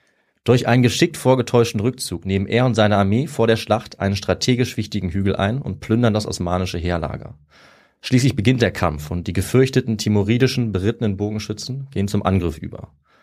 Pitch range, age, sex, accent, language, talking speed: 95-115 Hz, 30-49, male, German, German, 170 wpm